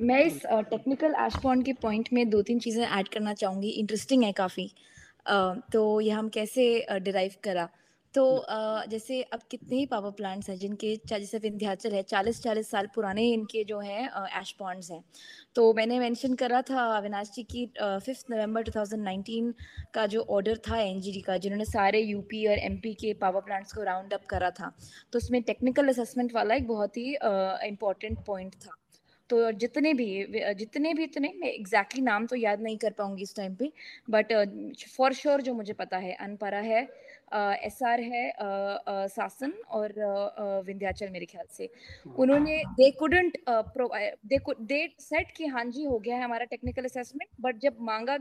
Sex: female